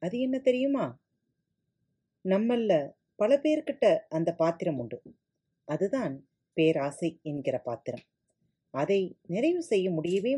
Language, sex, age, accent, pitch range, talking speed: Tamil, female, 40-59, native, 160-225 Hz, 100 wpm